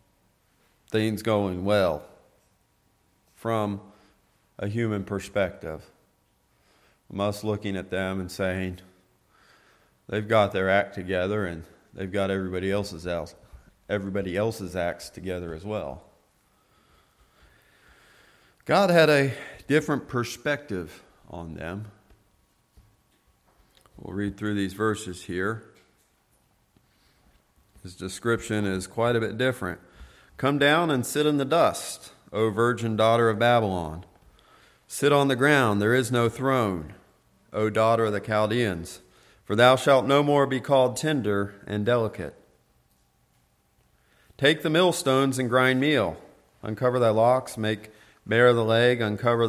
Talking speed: 120 wpm